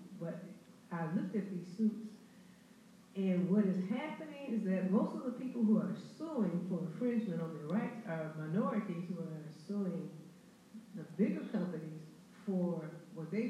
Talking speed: 155 wpm